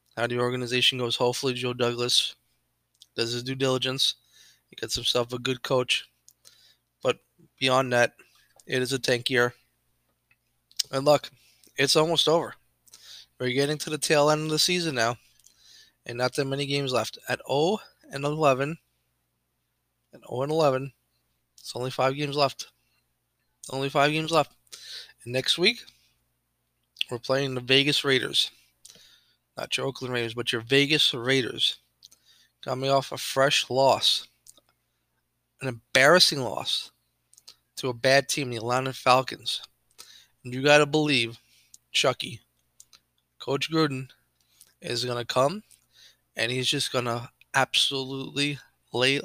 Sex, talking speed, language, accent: male, 135 wpm, English, American